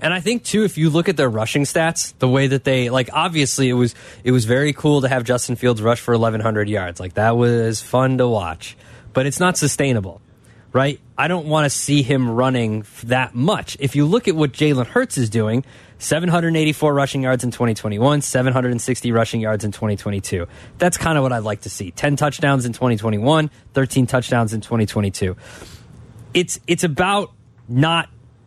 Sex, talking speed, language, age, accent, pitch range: male, 190 wpm, English, 20-39, American, 120-150 Hz